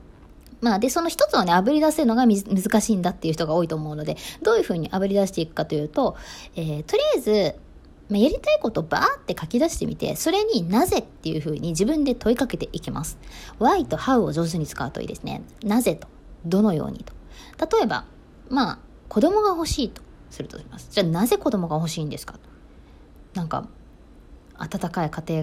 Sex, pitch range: female, 160-245 Hz